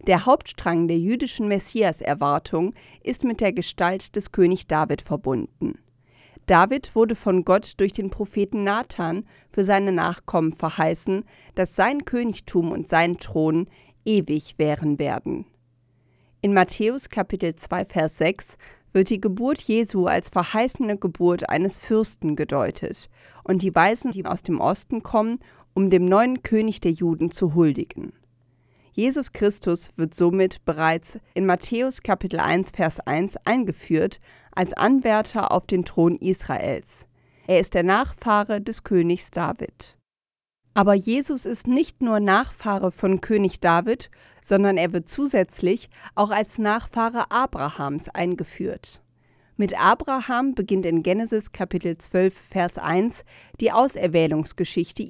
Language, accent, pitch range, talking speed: German, German, 170-215 Hz, 130 wpm